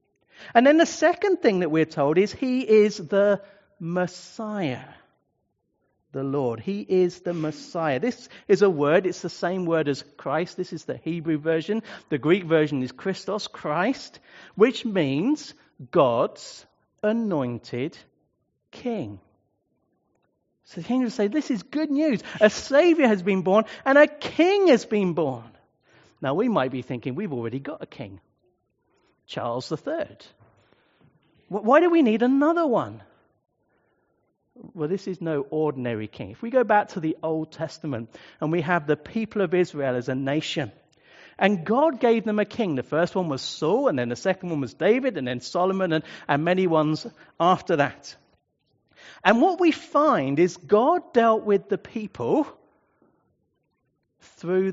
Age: 50-69